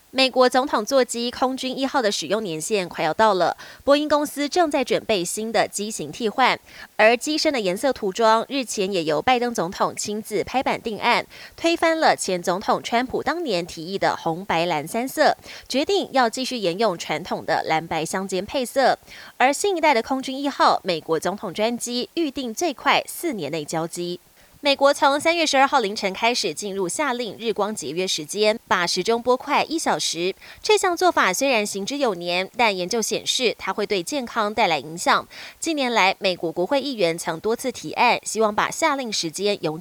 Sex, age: female, 20-39